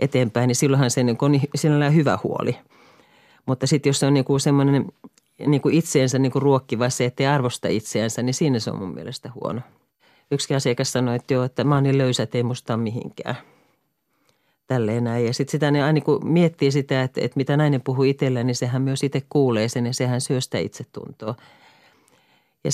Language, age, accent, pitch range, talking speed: Finnish, 40-59, native, 120-140 Hz, 170 wpm